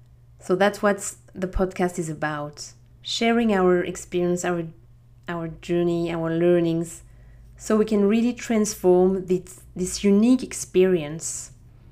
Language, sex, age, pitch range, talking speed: English, female, 20-39, 125-190 Hz, 120 wpm